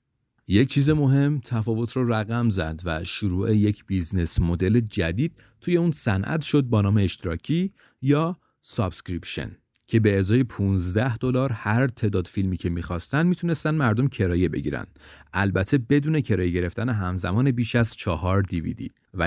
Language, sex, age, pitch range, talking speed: Persian, male, 30-49, 95-135 Hz, 140 wpm